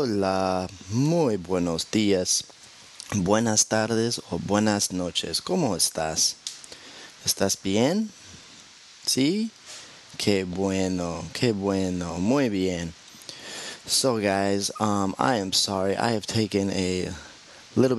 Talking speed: 105 wpm